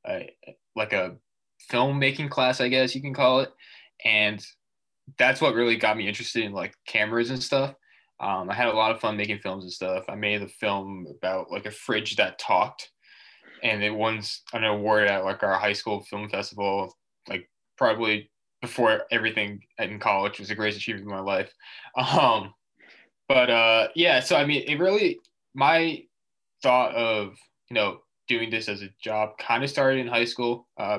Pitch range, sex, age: 105-125 Hz, male, 20-39